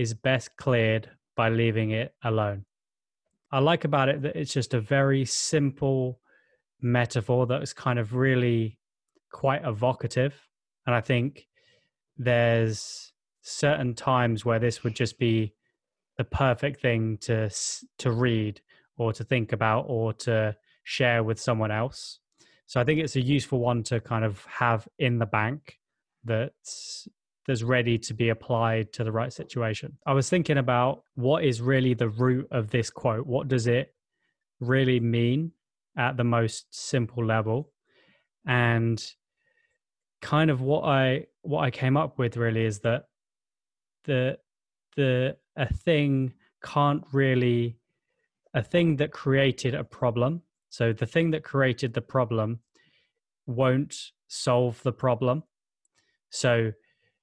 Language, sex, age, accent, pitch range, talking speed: English, male, 20-39, British, 115-140 Hz, 140 wpm